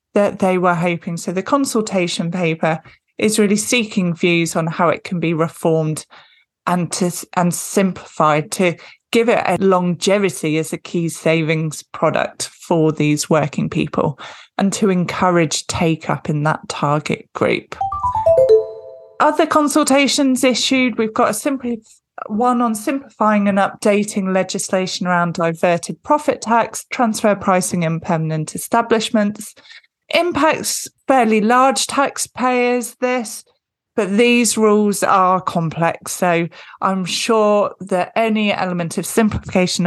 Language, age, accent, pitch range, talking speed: English, 20-39, British, 170-225 Hz, 130 wpm